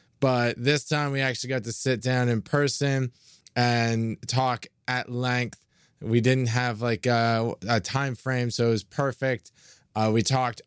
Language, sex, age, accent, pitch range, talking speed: English, male, 20-39, American, 120-145 Hz, 170 wpm